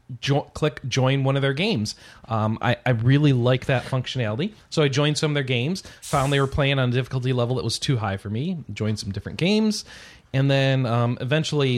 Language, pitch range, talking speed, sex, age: English, 110-145 Hz, 215 wpm, male, 30-49